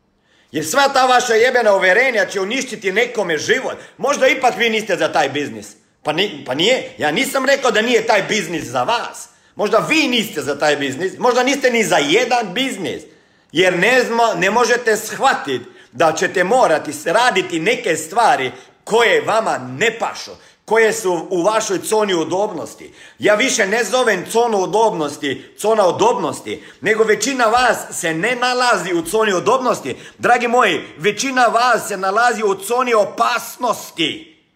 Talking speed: 155 wpm